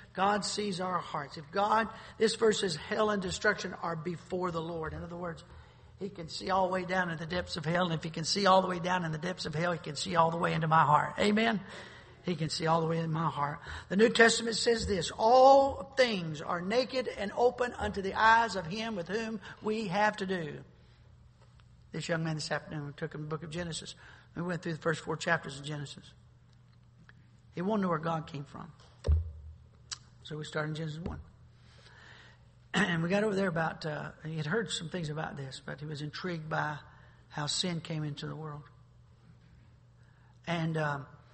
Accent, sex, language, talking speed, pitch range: American, male, English, 215 wpm, 150-190 Hz